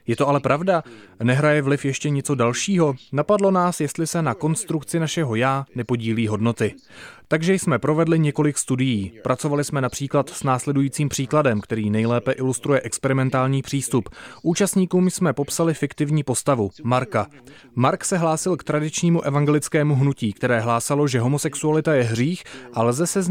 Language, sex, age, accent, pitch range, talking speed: Czech, male, 30-49, native, 120-155 Hz, 150 wpm